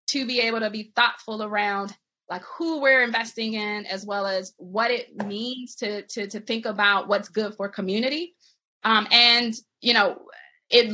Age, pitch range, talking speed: 20-39, 205-245 Hz, 175 wpm